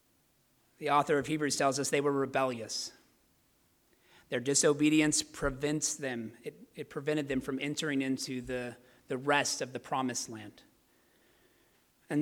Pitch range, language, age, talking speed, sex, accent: 135-165 Hz, English, 30-49, 140 wpm, male, American